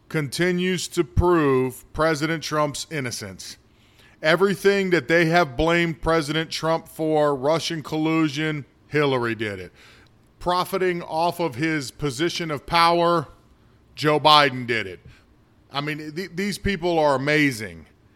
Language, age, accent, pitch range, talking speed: English, 40-59, American, 135-175 Hz, 120 wpm